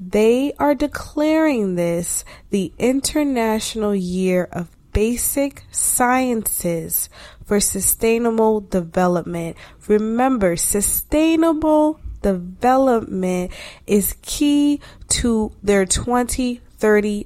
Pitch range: 180-240 Hz